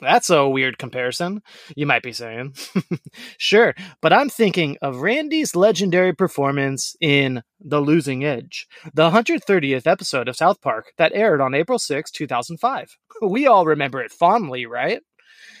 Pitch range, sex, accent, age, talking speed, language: 130-185 Hz, male, American, 30-49, 145 wpm, English